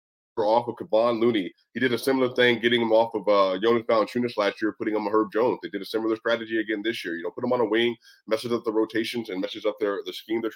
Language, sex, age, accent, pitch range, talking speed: English, male, 20-39, American, 110-145 Hz, 280 wpm